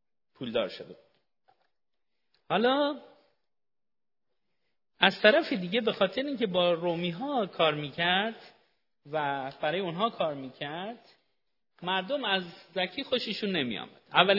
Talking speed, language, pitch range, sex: 105 wpm, Persian, 150-215 Hz, male